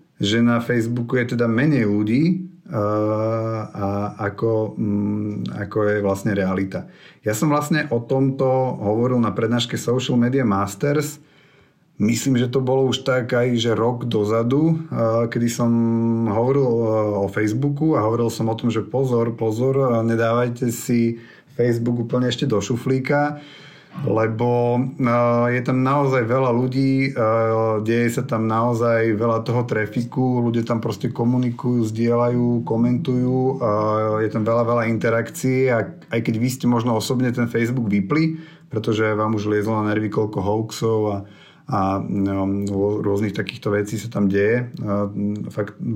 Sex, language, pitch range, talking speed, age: male, Slovak, 110-125 Hz, 140 wpm, 30-49